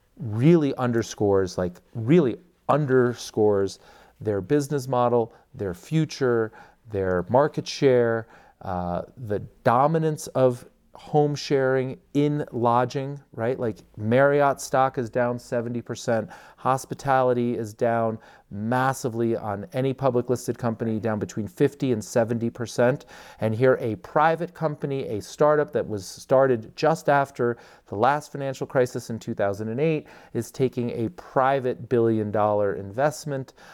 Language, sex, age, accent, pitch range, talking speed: English, male, 40-59, American, 110-145 Hz, 120 wpm